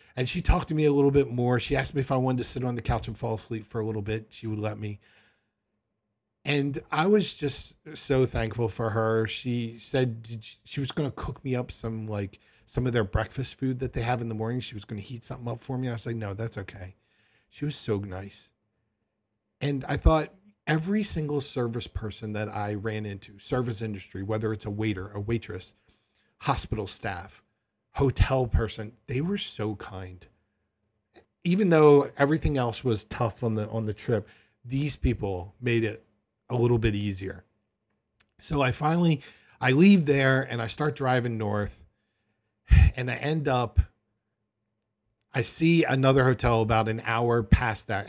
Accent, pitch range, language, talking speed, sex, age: American, 105-130 Hz, English, 185 wpm, male, 40-59